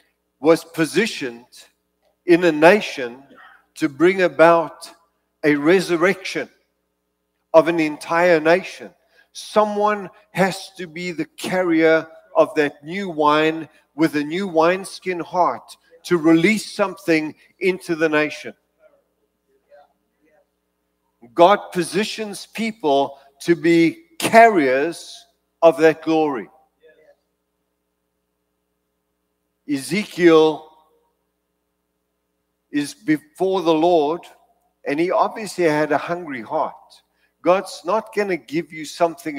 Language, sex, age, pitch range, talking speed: English, male, 50-69, 140-180 Hz, 95 wpm